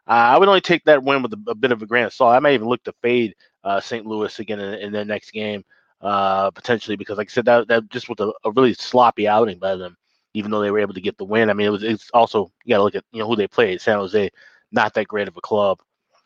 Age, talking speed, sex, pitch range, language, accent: 20-39, 300 wpm, male, 105-120 Hz, English, American